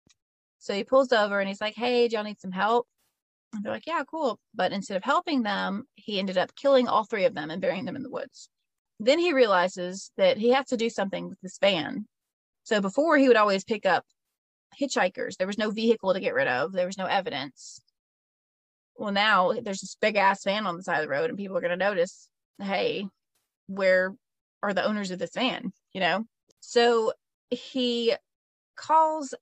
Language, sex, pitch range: English, female, 190-245 Hz